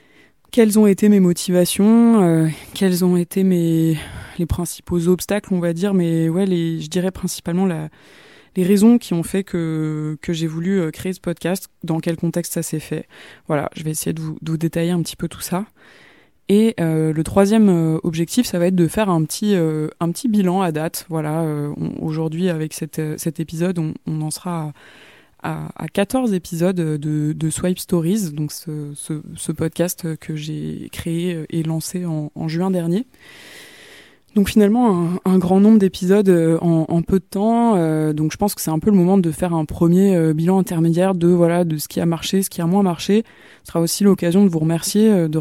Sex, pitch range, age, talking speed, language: female, 160-190 Hz, 20-39, 205 wpm, French